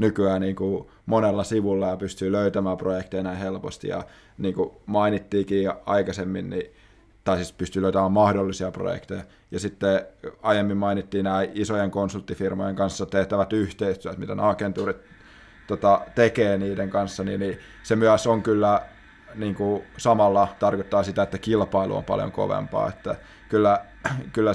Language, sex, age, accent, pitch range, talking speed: Finnish, male, 20-39, native, 95-105 Hz, 135 wpm